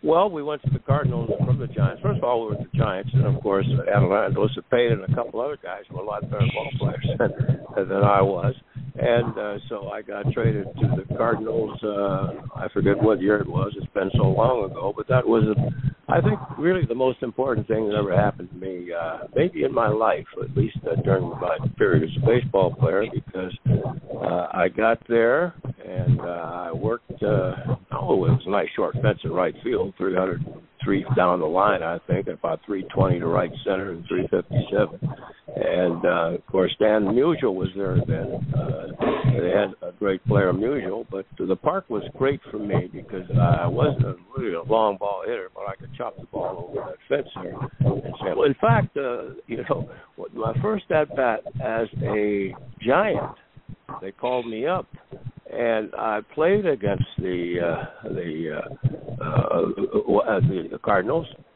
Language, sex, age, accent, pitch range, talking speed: English, male, 60-79, American, 105-140 Hz, 185 wpm